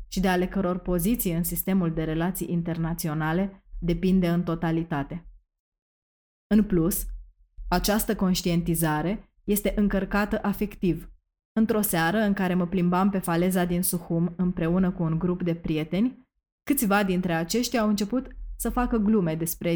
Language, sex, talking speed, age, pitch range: Romanian, female, 135 wpm, 20-39, 165-195 Hz